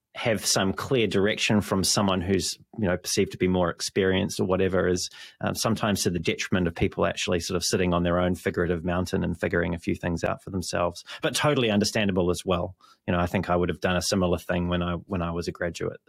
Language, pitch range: English, 90-110 Hz